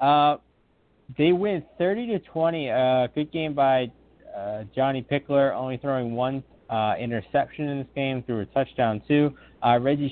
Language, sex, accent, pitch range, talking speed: English, male, American, 125-155 Hz, 160 wpm